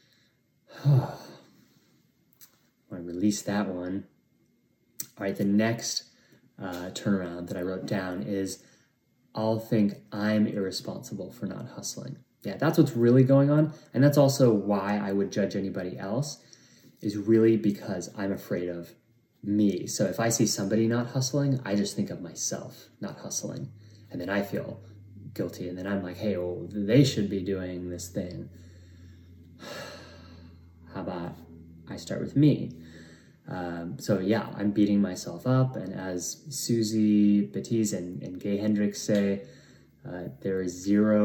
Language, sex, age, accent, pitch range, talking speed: English, male, 20-39, American, 90-110 Hz, 150 wpm